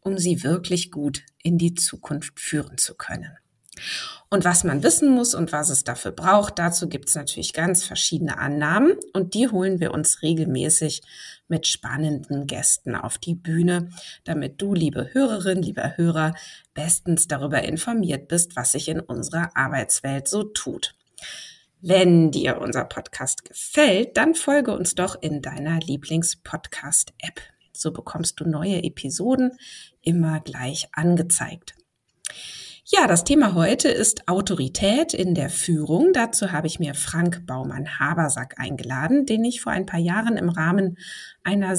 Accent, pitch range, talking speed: German, 150-190 Hz, 150 wpm